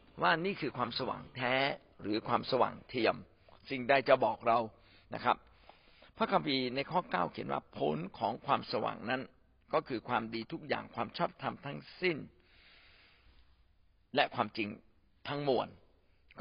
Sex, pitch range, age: male, 100-160 Hz, 60-79